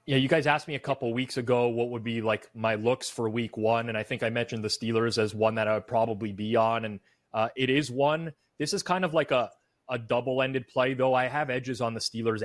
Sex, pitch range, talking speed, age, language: male, 115-130 Hz, 260 wpm, 30-49, English